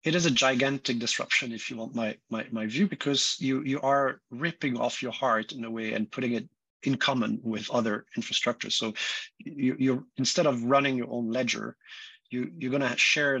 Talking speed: 200 wpm